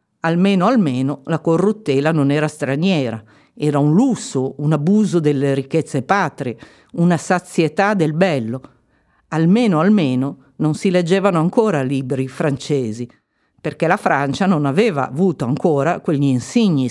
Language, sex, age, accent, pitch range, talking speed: Italian, female, 50-69, native, 140-185 Hz, 130 wpm